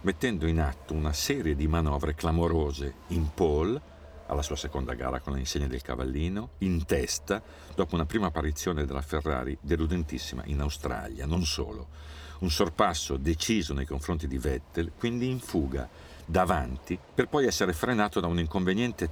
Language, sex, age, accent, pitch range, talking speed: Italian, male, 50-69, native, 70-95 Hz, 155 wpm